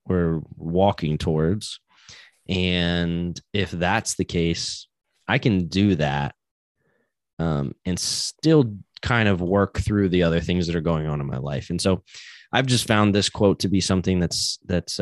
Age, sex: 20-39, male